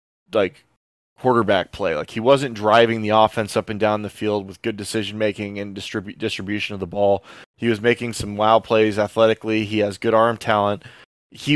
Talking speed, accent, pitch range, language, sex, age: 190 wpm, American, 105-115 Hz, English, male, 20-39